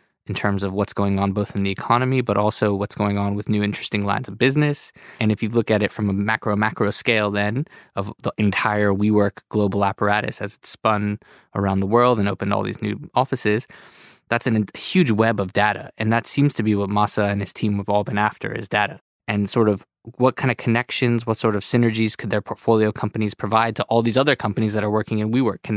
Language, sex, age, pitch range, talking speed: English, male, 20-39, 100-115 Hz, 230 wpm